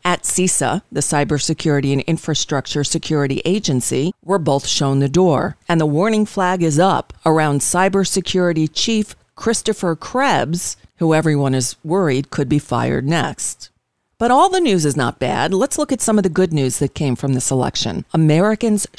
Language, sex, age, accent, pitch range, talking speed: English, female, 40-59, American, 155-210 Hz, 170 wpm